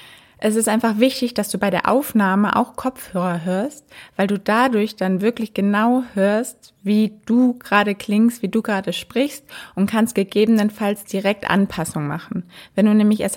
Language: German